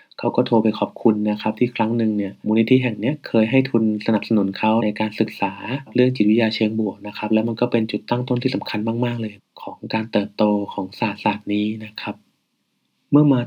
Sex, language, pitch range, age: male, Thai, 105-125 Hz, 20-39